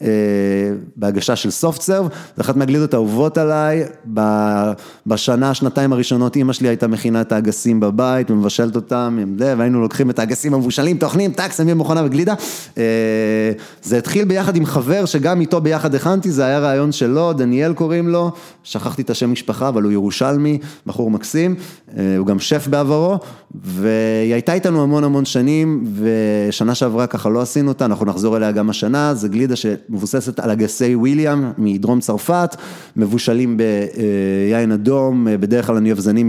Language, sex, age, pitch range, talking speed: Hebrew, male, 30-49, 110-150 Hz, 150 wpm